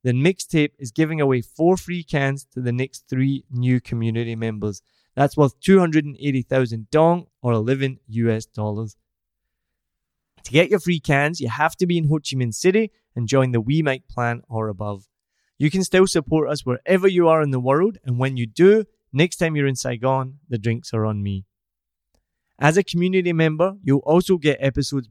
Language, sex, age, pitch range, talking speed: English, male, 20-39, 115-160 Hz, 185 wpm